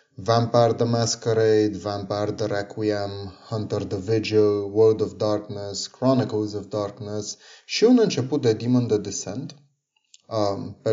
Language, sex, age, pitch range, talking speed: Romanian, male, 30-49, 105-115 Hz, 125 wpm